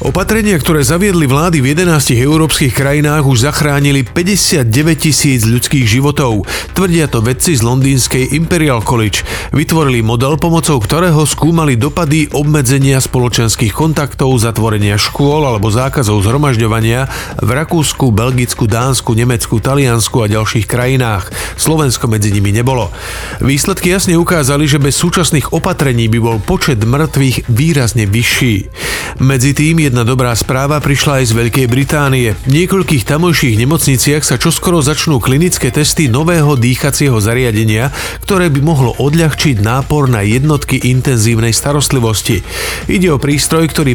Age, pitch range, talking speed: 40-59, 120-150 Hz, 130 wpm